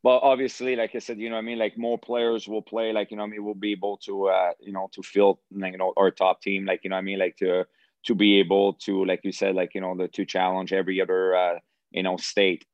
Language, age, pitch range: English, 30-49, 90-100 Hz